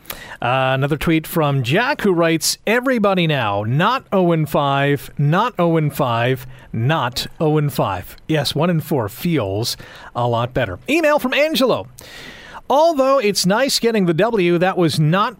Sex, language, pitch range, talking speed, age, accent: male, English, 150-200 Hz, 130 wpm, 40-59, American